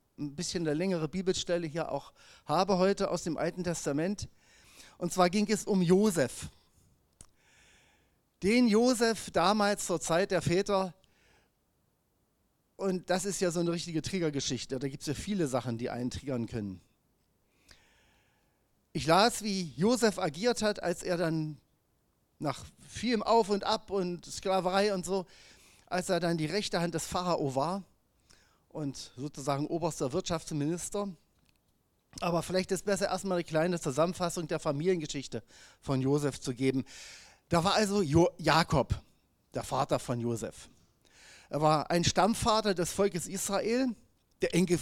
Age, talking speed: 40-59, 145 wpm